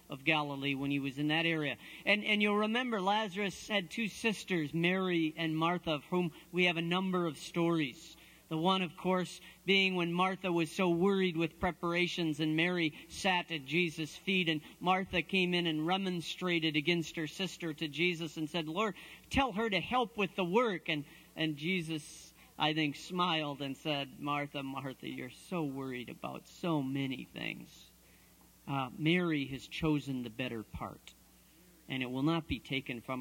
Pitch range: 140-180 Hz